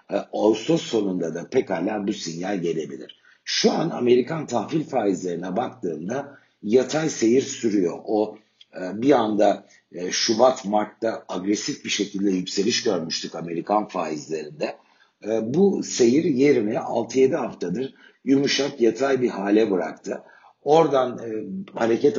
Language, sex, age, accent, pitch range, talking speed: Turkish, male, 60-79, native, 95-120 Hz, 110 wpm